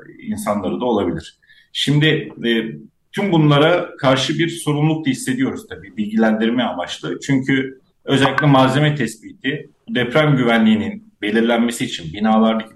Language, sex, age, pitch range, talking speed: Turkish, male, 40-59, 110-140 Hz, 115 wpm